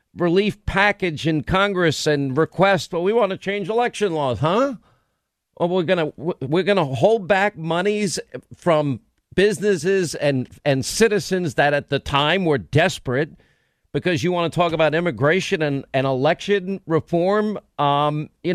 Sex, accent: male, American